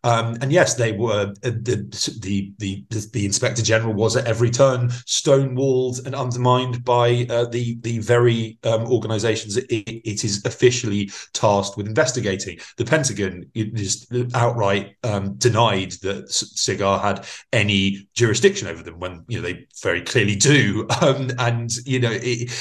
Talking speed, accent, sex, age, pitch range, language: 155 wpm, British, male, 30-49, 100-125 Hz, English